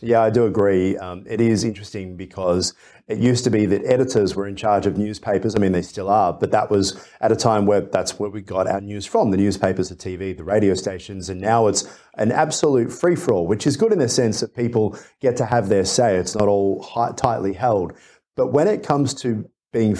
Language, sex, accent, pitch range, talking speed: English, male, Australian, 95-115 Hz, 235 wpm